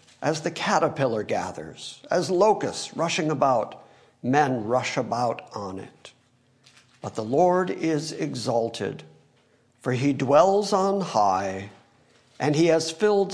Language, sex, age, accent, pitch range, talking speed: English, male, 60-79, American, 130-185 Hz, 120 wpm